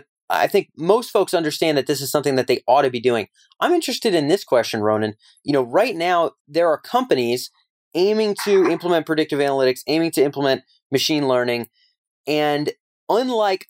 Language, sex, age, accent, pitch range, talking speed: English, male, 30-49, American, 130-190 Hz, 175 wpm